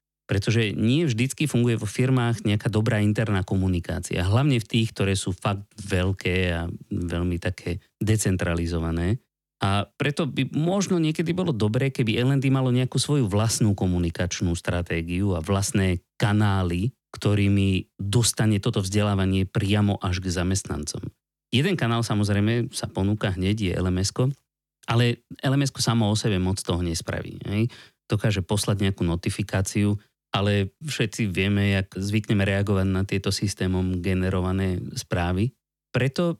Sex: male